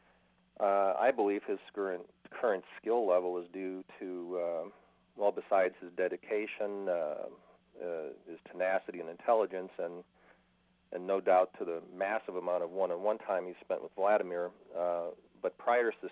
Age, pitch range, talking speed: 40-59, 90-110 Hz, 155 wpm